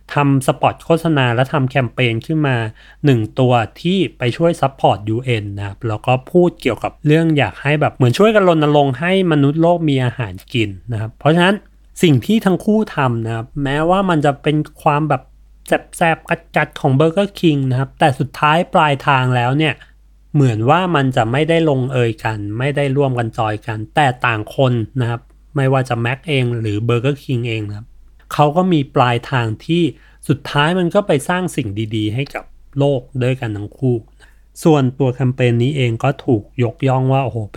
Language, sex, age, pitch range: Thai, male, 30-49, 115-150 Hz